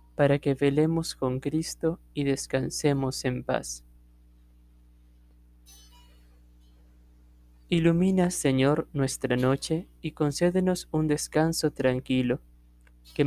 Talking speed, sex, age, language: 85 wpm, male, 20-39, Spanish